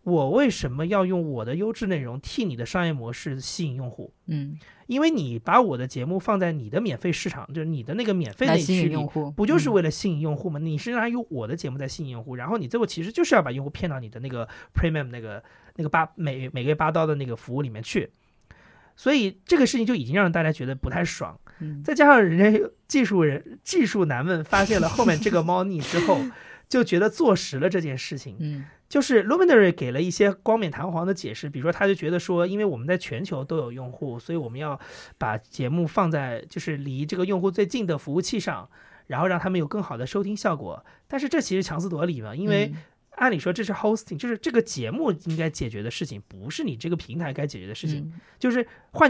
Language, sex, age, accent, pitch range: Chinese, male, 30-49, native, 145-205 Hz